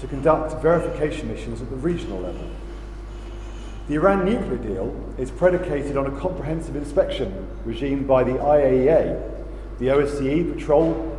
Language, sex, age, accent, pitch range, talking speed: English, male, 40-59, British, 125-160 Hz, 135 wpm